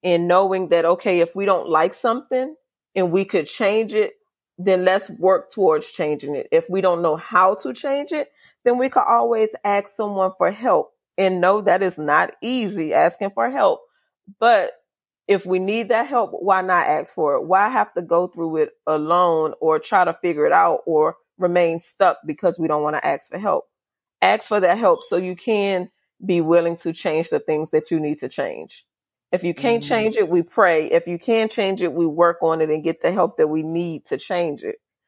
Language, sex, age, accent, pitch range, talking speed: English, female, 30-49, American, 170-205 Hz, 210 wpm